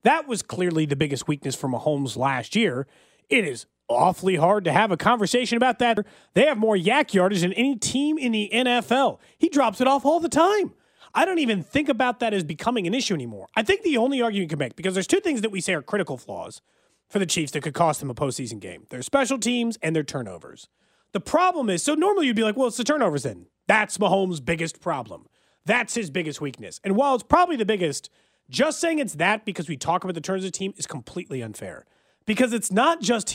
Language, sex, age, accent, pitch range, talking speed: English, male, 30-49, American, 165-255 Hz, 235 wpm